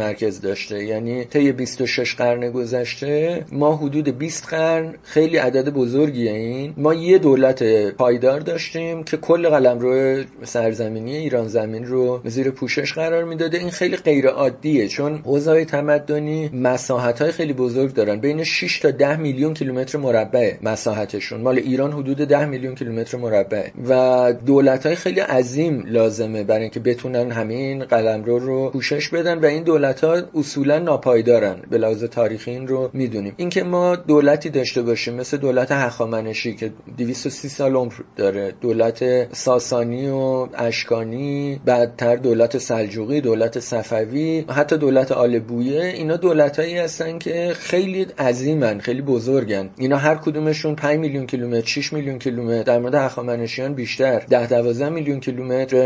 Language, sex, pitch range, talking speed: Persian, male, 120-150 Hz, 150 wpm